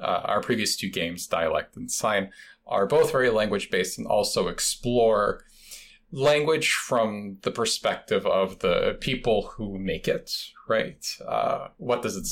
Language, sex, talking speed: English, male, 145 wpm